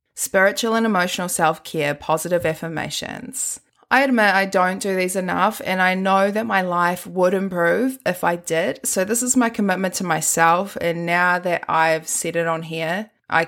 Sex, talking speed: female, 180 wpm